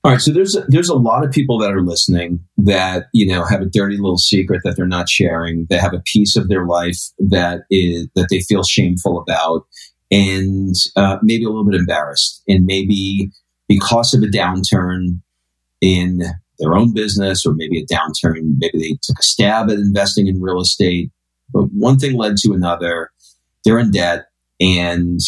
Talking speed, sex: 190 wpm, male